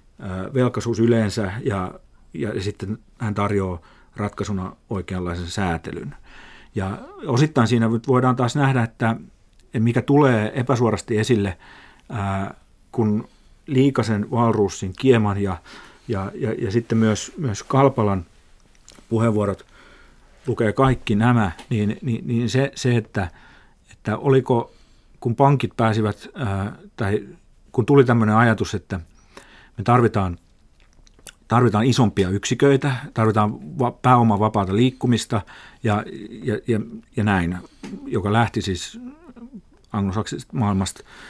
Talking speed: 105 wpm